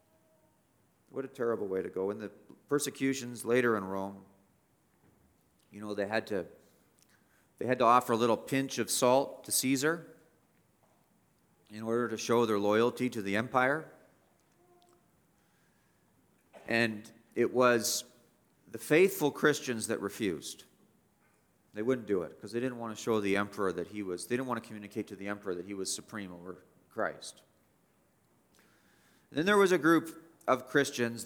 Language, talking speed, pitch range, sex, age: English, 155 wpm, 110-145 Hz, male, 40-59